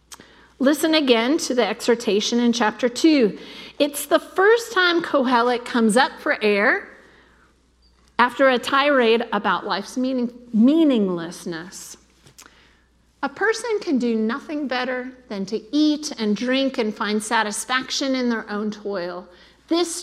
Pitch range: 200-265 Hz